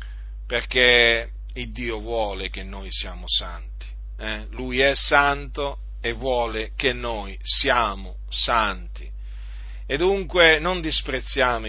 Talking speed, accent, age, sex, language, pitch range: 115 wpm, native, 40-59, male, Italian, 105-145 Hz